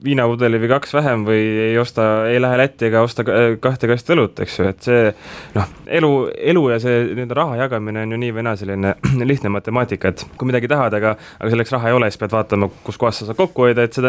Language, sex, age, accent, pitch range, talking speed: English, male, 20-39, Finnish, 100-125 Hz, 210 wpm